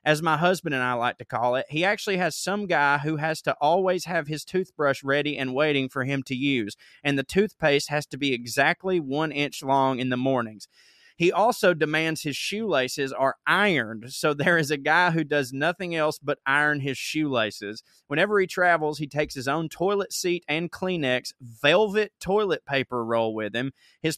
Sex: male